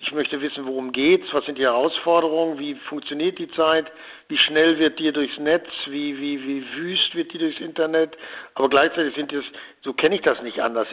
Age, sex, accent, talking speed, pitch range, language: 60-79, male, German, 205 wpm, 135-165 Hz, German